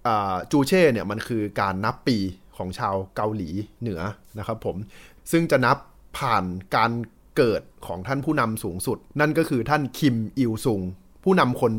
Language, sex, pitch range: Thai, male, 100-140 Hz